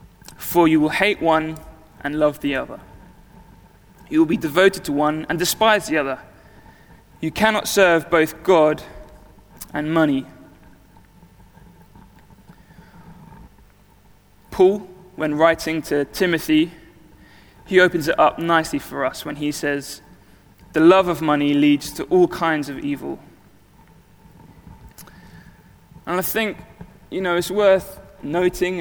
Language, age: English, 20-39